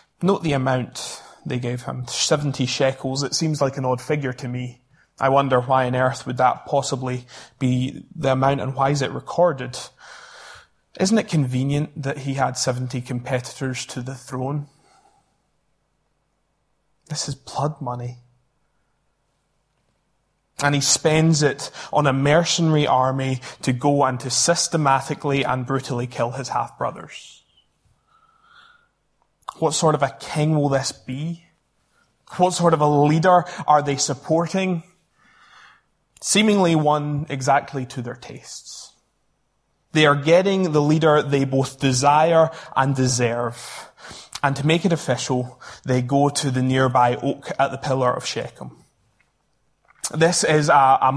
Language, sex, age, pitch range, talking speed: English, male, 20-39, 130-160 Hz, 135 wpm